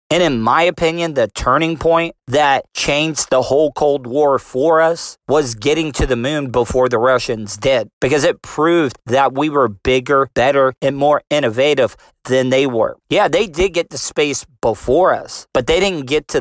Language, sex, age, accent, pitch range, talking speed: English, male, 40-59, American, 130-155 Hz, 185 wpm